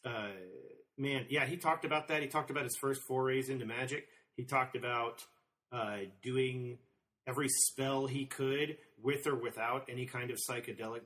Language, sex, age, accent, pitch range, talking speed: English, male, 40-59, American, 115-155 Hz, 170 wpm